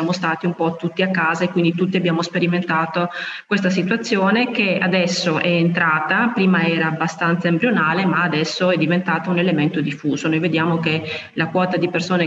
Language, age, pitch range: Italian, 30-49, 165-190 Hz